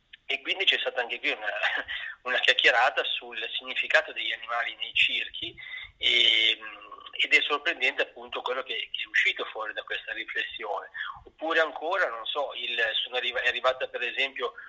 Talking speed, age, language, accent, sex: 160 wpm, 40-59, Italian, native, male